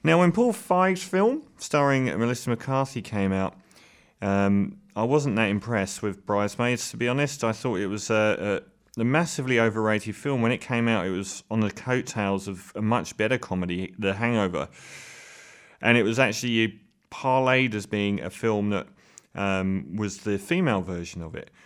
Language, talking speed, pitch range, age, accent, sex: English, 175 wpm, 100-130 Hz, 30-49, British, male